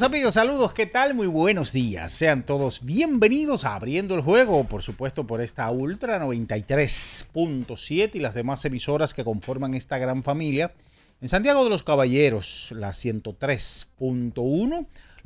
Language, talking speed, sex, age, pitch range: Spanish, 140 wpm, male, 40-59, 120-160 Hz